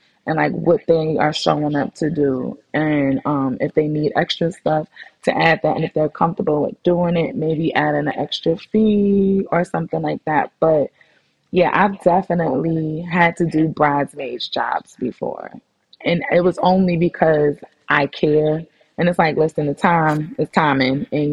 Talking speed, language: 170 wpm, English